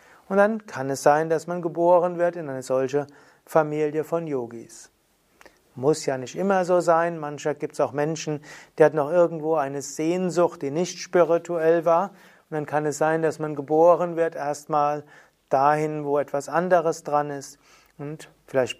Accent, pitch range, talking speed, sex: German, 145-170 Hz, 170 wpm, male